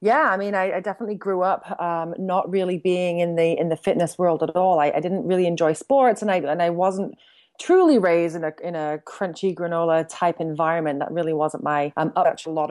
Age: 30-49